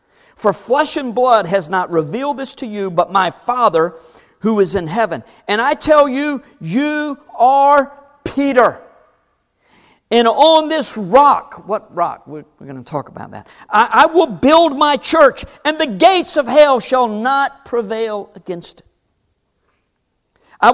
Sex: male